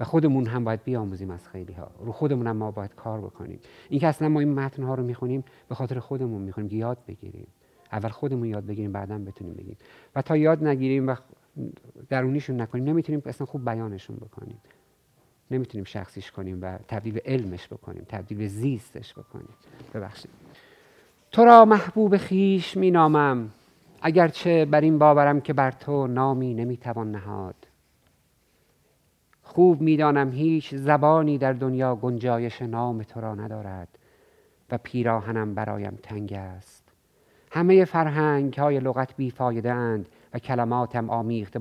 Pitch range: 105-135 Hz